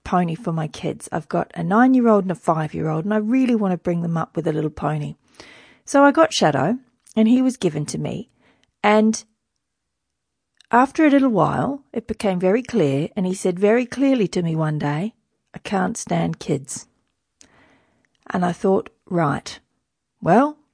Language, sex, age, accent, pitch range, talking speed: English, female, 40-59, Australian, 180-240 Hz, 175 wpm